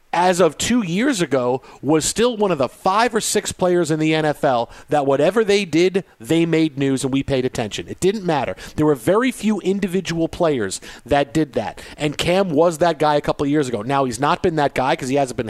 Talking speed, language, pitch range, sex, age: 230 wpm, English, 145-190 Hz, male, 40-59